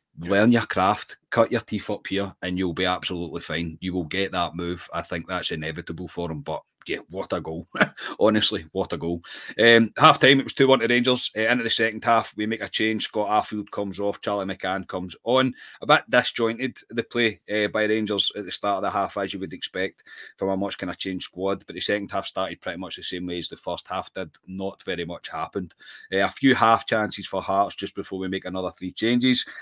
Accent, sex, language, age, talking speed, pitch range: British, male, English, 30-49, 235 wpm, 90-110 Hz